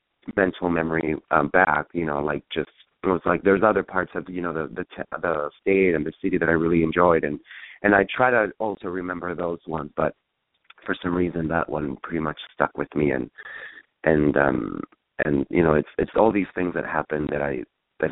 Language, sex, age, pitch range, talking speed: English, male, 30-49, 75-90 Hz, 210 wpm